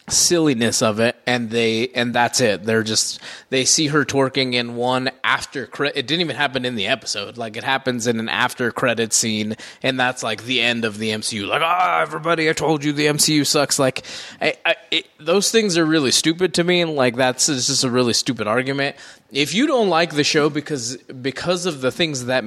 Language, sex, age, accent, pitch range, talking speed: English, male, 20-39, American, 115-145 Hz, 220 wpm